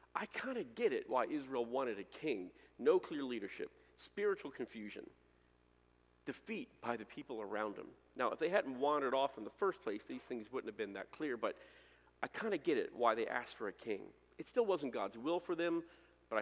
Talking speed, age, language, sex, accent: 210 wpm, 40-59, English, male, American